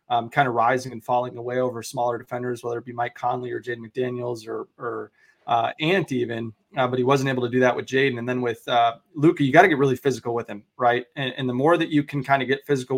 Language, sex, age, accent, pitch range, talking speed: English, male, 20-39, American, 120-135 Hz, 270 wpm